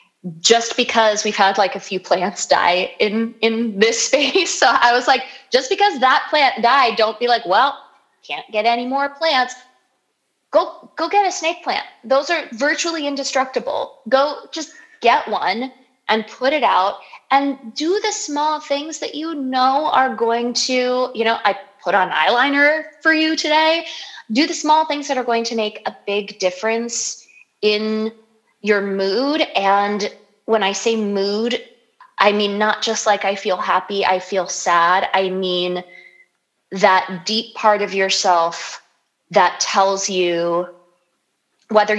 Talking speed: 160 wpm